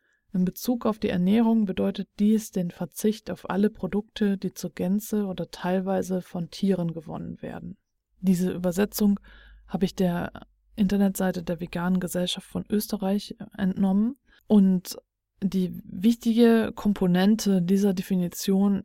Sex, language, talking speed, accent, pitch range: female, German, 125 wpm, German, 185-215 Hz